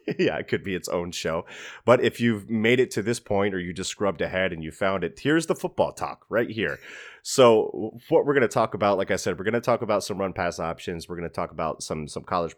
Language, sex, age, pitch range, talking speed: English, male, 30-49, 85-105 Hz, 270 wpm